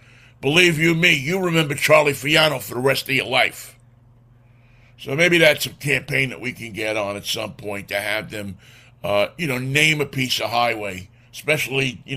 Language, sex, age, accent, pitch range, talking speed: English, male, 50-69, American, 120-160 Hz, 190 wpm